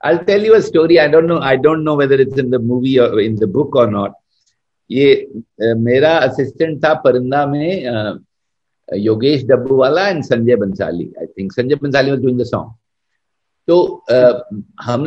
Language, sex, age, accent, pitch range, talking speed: Hindi, male, 50-69, native, 125-185 Hz, 170 wpm